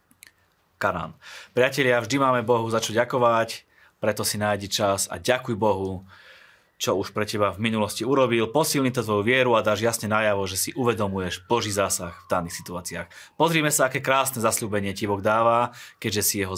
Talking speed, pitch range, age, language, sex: 175 wpm, 100-125 Hz, 30-49, Slovak, male